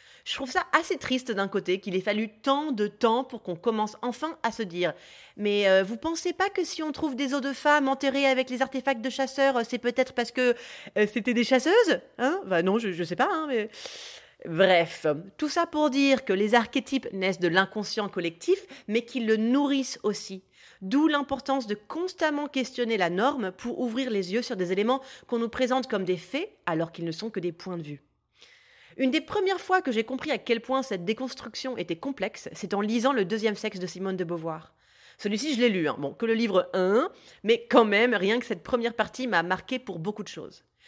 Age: 30-49